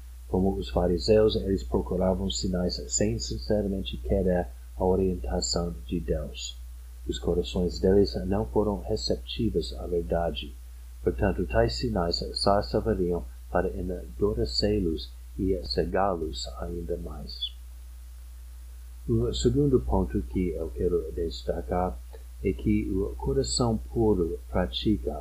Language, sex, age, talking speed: Portuguese, male, 50-69, 105 wpm